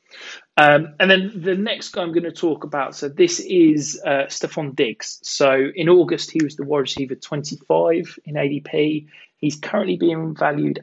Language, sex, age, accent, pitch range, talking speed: English, male, 20-39, British, 130-150 Hz, 175 wpm